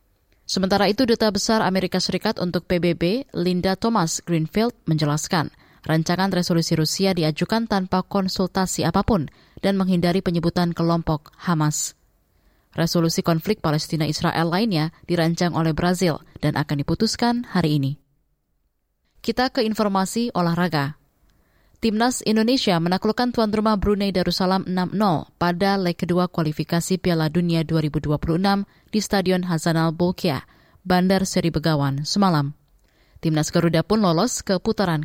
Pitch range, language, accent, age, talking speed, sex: 160-195 Hz, Indonesian, native, 20-39, 120 wpm, female